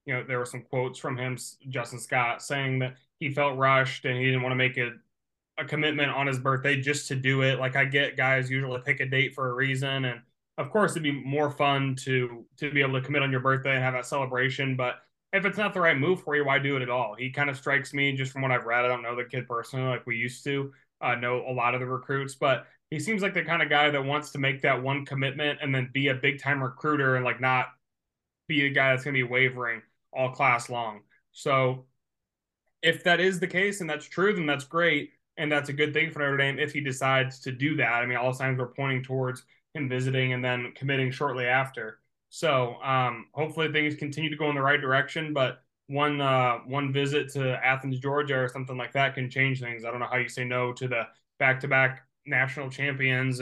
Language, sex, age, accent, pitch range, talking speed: English, male, 20-39, American, 130-145 Hz, 245 wpm